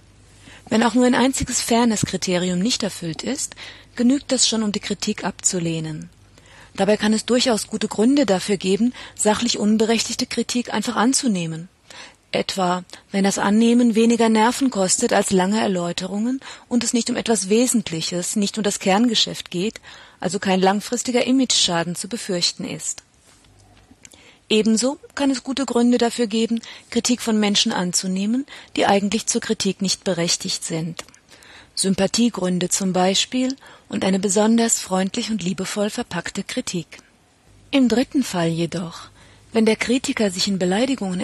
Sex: female